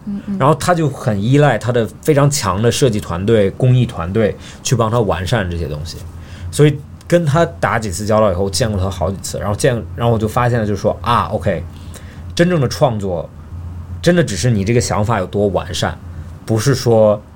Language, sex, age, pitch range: Chinese, male, 20-39, 95-130 Hz